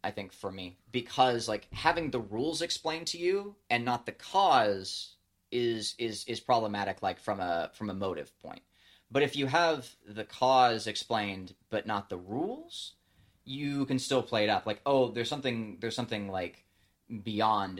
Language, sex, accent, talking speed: English, male, American, 175 wpm